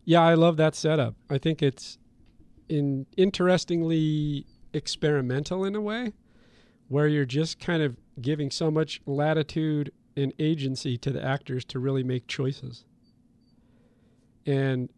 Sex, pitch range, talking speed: male, 130-160 Hz, 130 wpm